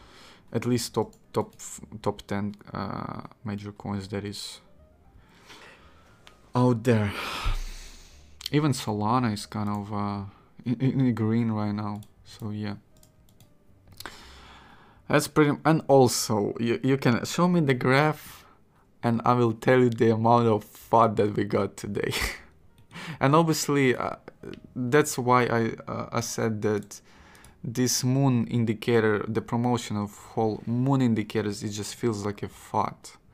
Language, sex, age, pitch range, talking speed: English, male, 20-39, 105-125 Hz, 135 wpm